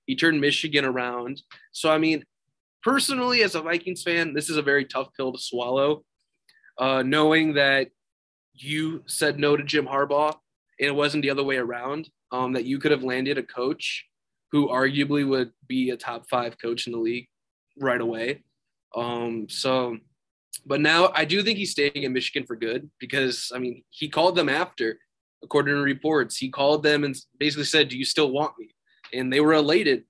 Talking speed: 190 wpm